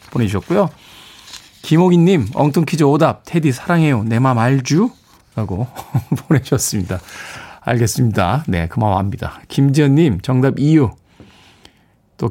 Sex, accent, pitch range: male, native, 110-160 Hz